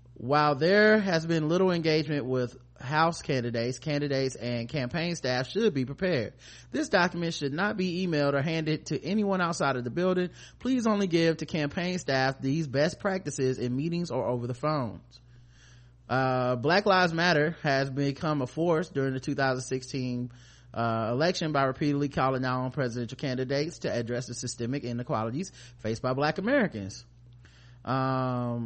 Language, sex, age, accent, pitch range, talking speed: English, male, 30-49, American, 125-170 Hz, 155 wpm